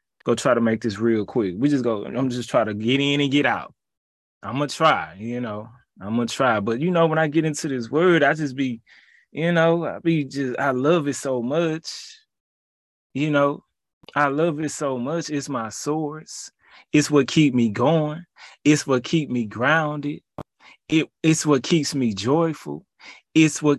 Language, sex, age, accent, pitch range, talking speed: English, male, 20-39, American, 125-160 Hz, 200 wpm